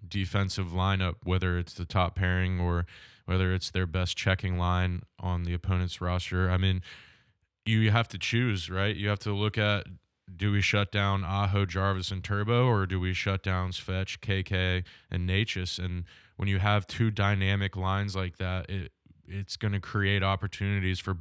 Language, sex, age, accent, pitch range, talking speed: English, male, 20-39, American, 90-100 Hz, 180 wpm